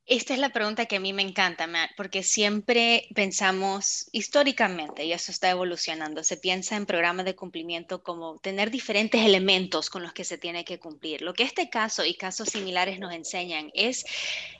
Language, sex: Spanish, female